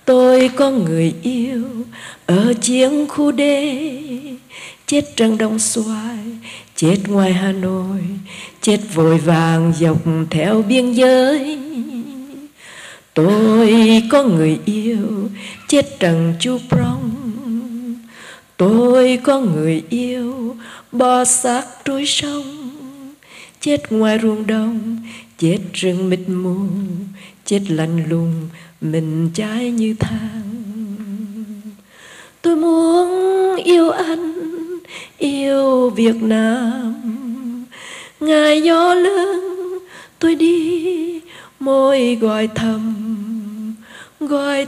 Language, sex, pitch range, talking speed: Vietnamese, female, 215-285 Hz, 95 wpm